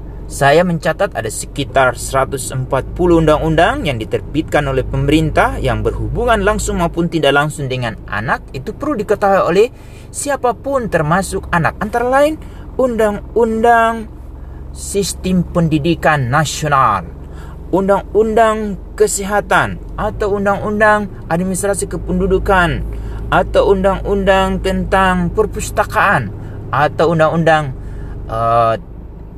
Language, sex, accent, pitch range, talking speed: Indonesian, male, native, 115-195 Hz, 90 wpm